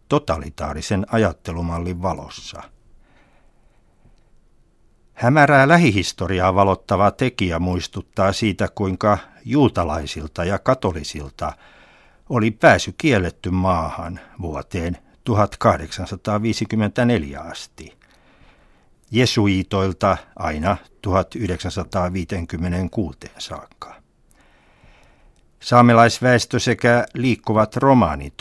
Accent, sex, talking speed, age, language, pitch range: native, male, 60 wpm, 60-79, Finnish, 85-115 Hz